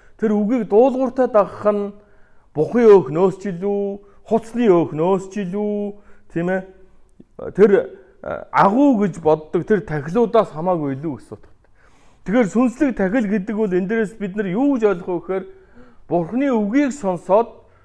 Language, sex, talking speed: Russian, male, 100 wpm